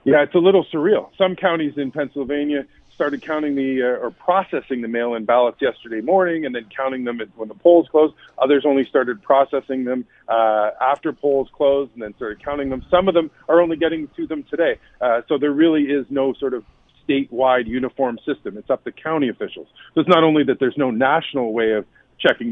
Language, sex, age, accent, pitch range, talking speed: English, male, 40-59, American, 125-160 Hz, 210 wpm